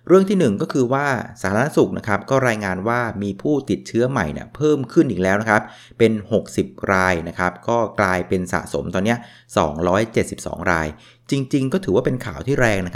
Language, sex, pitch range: Thai, male, 95-130 Hz